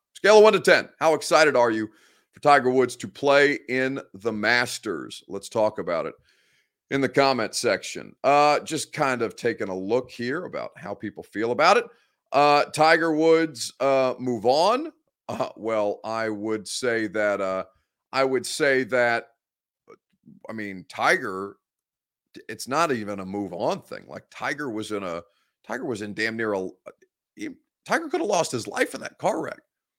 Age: 40-59